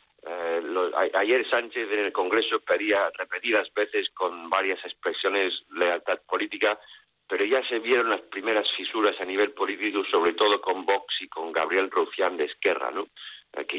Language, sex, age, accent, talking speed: Spanish, male, 50-69, Spanish, 165 wpm